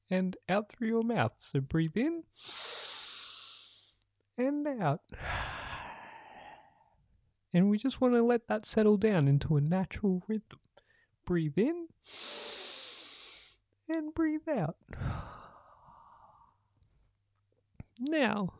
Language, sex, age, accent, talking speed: English, male, 30-49, American, 95 wpm